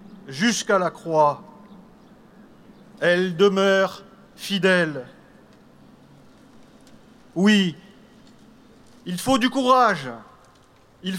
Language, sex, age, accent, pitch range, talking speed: French, male, 40-59, French, 185-220 Hz, 65 wpm